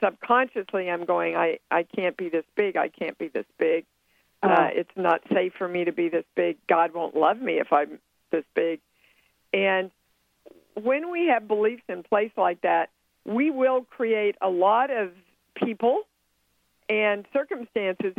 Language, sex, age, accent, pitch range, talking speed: English, female, 50-69, American, 175-225 Hz, 165 wpm